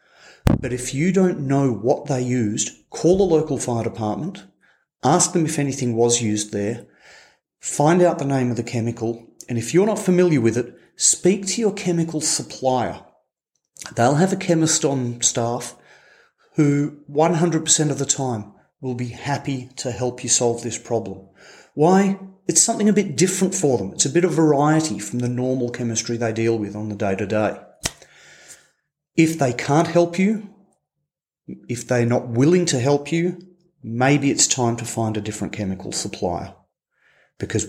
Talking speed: 170 wpm